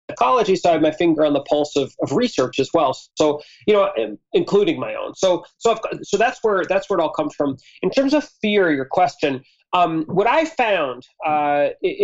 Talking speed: 215 wpm